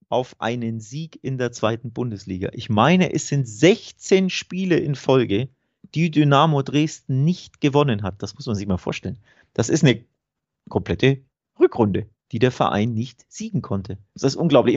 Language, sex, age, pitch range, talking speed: German, male, 30-49, 110-145 Hz, 165 wpm